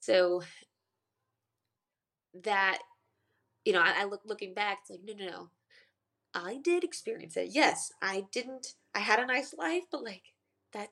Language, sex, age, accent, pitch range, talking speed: English, female, 20-39, American, 170-215 Hz, 160 wpm